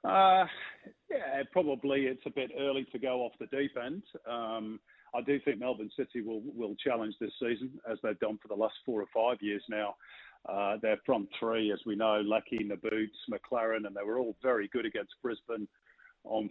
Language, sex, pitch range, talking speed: English, male, 110-140 Hz, 195 wpm